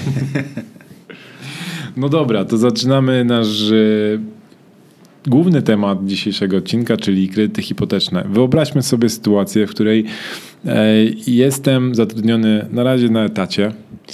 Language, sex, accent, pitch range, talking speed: Polish, male, native, 105-120 Hz, 100 wpm